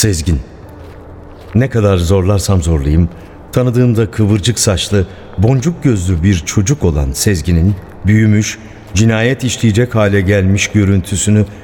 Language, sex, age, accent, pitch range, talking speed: Turkish, male, 60-79, native, 85-110 Hz, 105 wpm